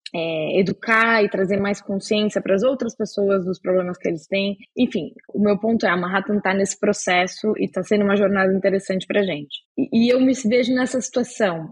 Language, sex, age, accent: Portuguese, female, 10-29, Brazilian